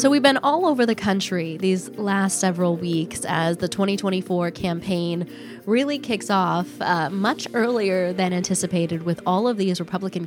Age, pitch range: 20-39, 170-200 Hz